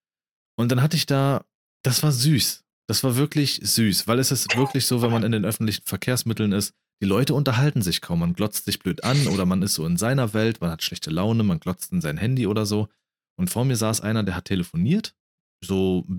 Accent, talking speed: German, 230 wpm